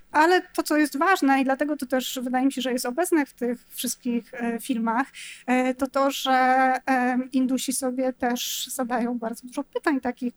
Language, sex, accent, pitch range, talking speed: Polish, female, native, 230-260 Hz, 175 wpm